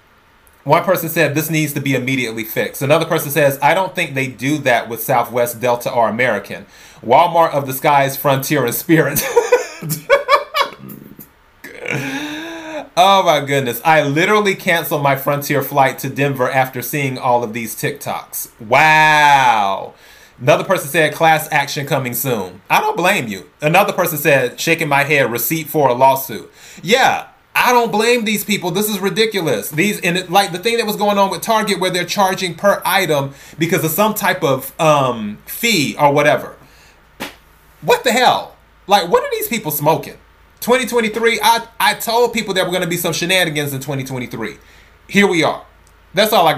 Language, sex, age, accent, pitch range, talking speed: English, male, 30-49, American, 140-195 Hz, 175 wpm